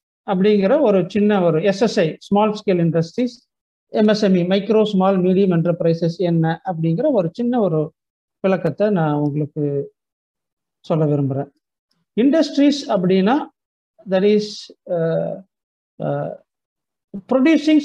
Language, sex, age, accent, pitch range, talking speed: Tamil, male, 50-69, native, 195-250 Hz, 95 wpm